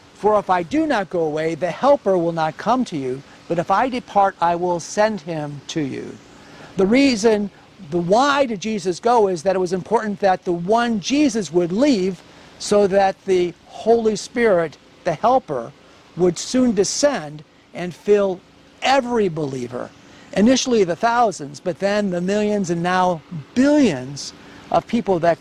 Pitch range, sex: 170-220 Hz, male